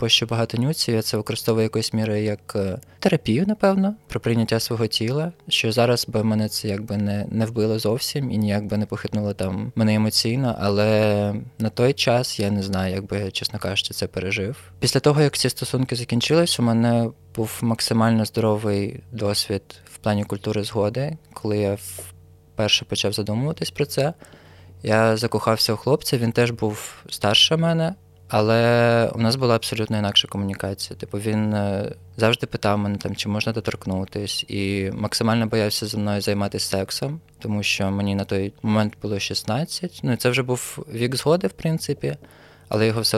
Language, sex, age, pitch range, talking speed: Ukrainian, male, 20-39, 100-120 Hz, 170 wpm